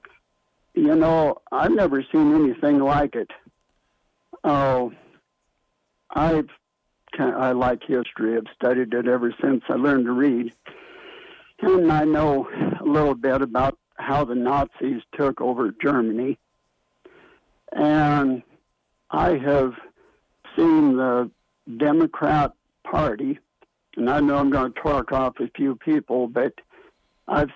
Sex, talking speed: male, 120 wpm